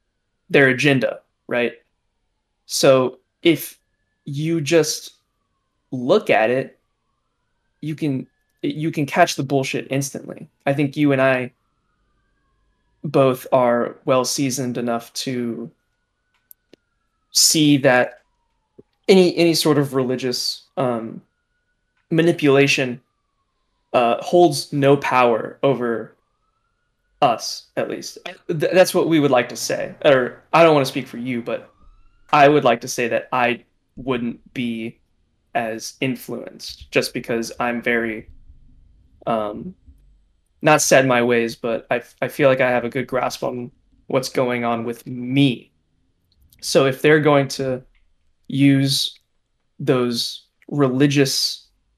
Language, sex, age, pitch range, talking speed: English, male, 20-39, 120-145 Hz, 125 wpm